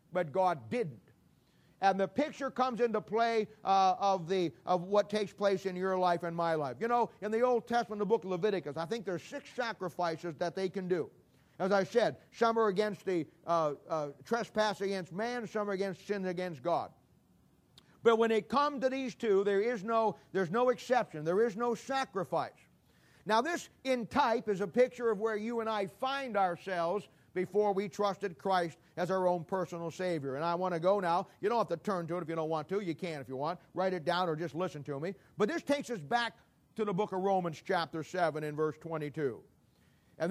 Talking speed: 215 wpm